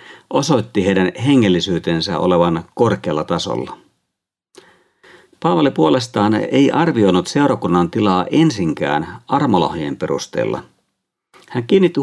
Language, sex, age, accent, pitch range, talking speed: Finnish, male, 50-69, native, 95-145 Hz, 85 wpm